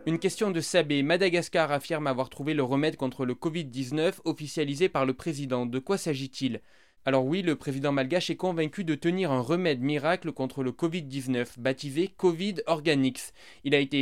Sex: male